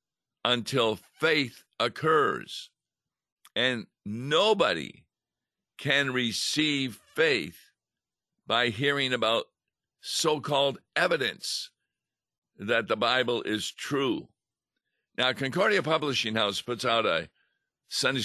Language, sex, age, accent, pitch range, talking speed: English, male, 50-69, American, 105-145 Hz, 85 wpm